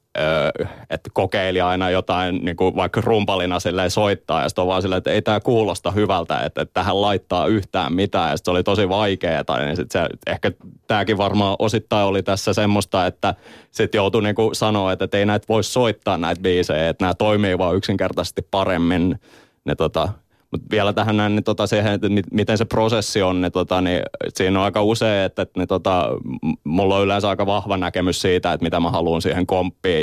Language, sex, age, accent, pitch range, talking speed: Finnish, male, 20-39, native, 90-110 Hz, 190 wpm